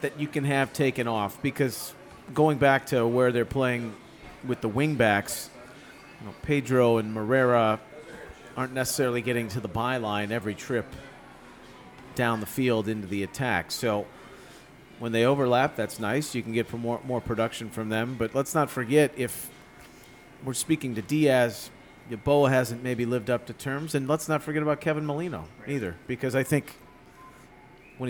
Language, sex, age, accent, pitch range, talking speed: English, male, 40-59, American, 110-130 Hz, 160 wpm